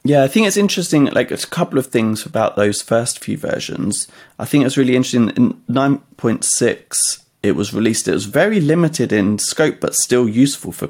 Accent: British